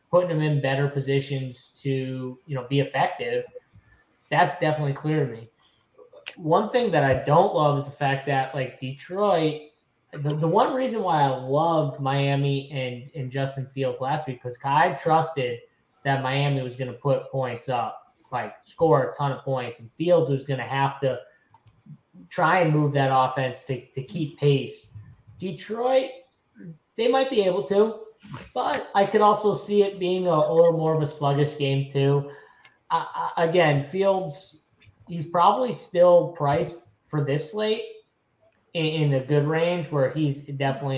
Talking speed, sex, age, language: 165 wpm, male, 10-29, English